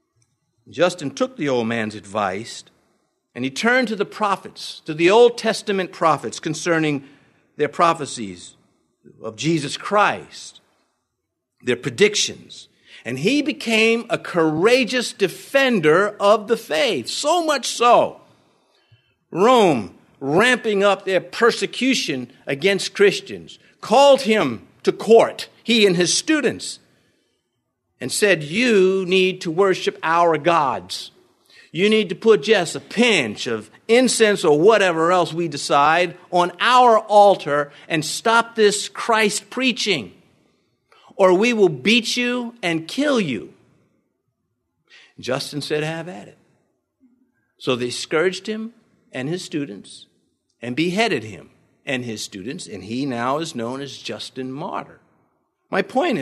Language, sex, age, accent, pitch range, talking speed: English, male, 50-69, American, 150-225 Hz, 125 wpm